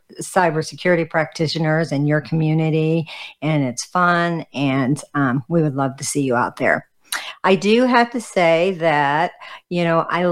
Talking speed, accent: 155 wpm, American